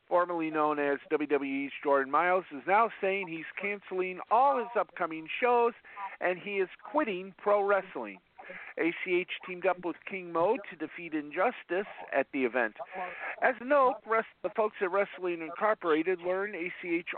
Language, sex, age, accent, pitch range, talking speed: English, male, 50-69, American, 175-245 Hz, 155 wpm